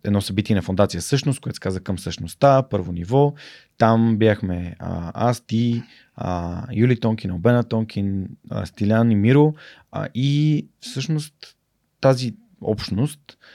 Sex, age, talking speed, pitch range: male, 20-39, 135 wpm, 100-125 Hz